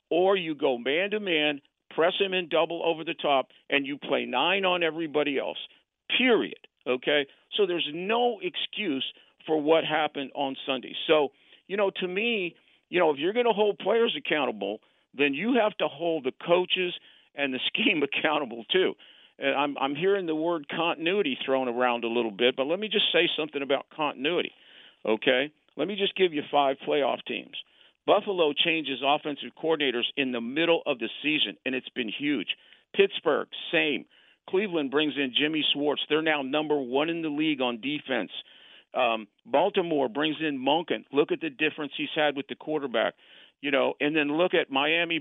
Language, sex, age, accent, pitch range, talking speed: English, male, 50-69, American, 135-170 Hz, 180 wpm